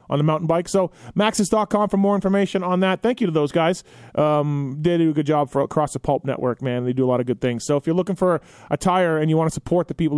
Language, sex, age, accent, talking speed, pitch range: English, male, 30-49, American, 290 wpm, 145-180 Hz